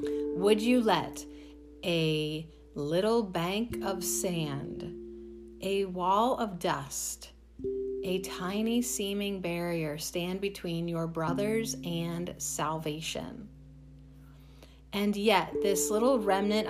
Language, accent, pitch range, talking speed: English, American, 145-205 Hz, 95 wpm